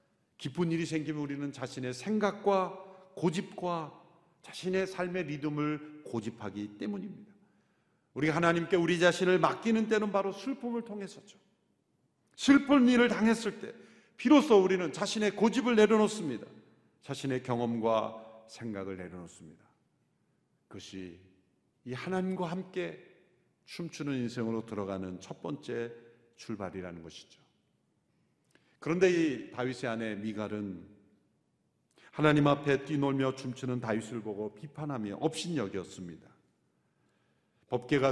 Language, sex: Korean, male